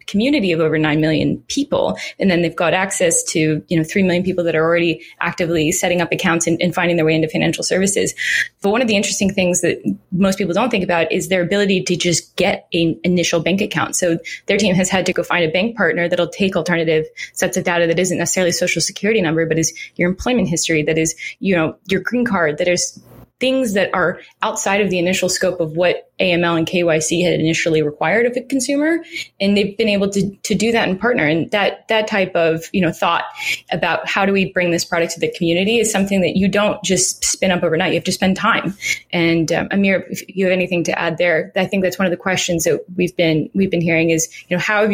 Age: 20-39